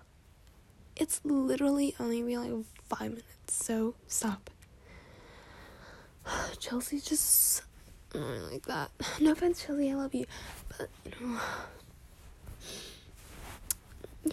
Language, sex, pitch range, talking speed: English, female, 235-295 Hz, 90 wpm